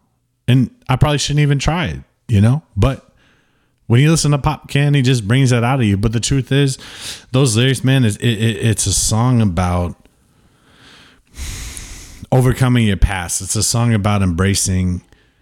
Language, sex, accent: English, male, American